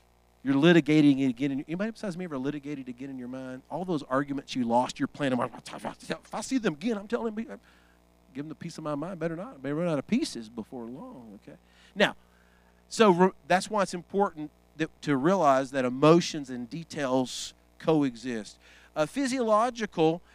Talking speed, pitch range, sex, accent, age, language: 185 wpm, 105-175 Hz, male, American, 40-59, English